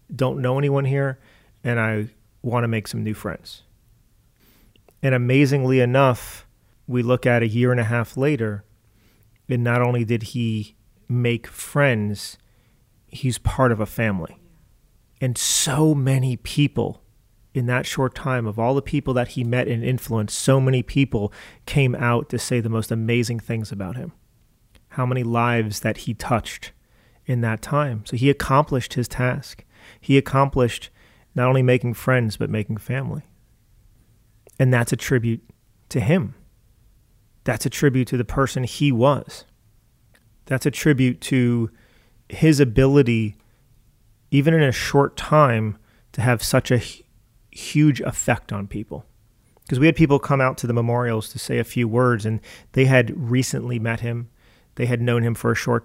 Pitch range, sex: 110-130 Hz, male